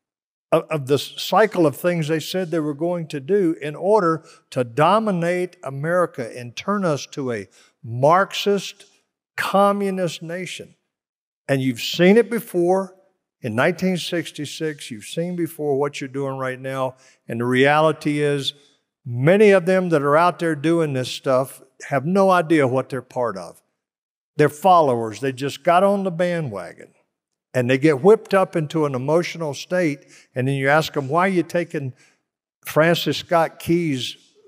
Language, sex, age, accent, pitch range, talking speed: English, male, 50-69, American, 130-170 Hz, 155 wpm